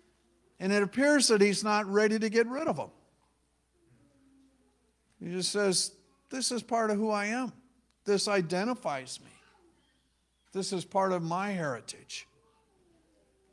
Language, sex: English, male